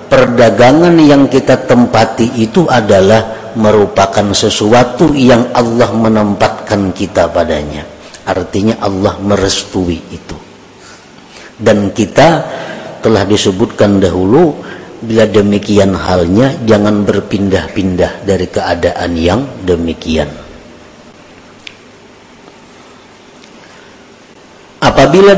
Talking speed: 75 wpm